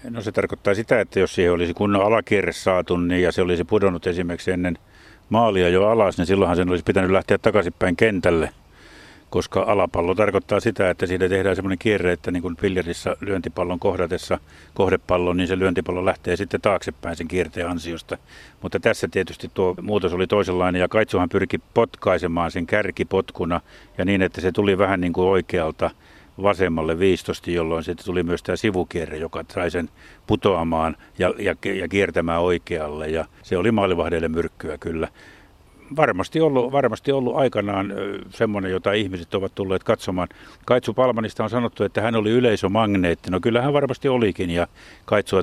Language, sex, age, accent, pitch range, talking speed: Finnish, male, 50-69, native, 85-105 Hz, 160 wpm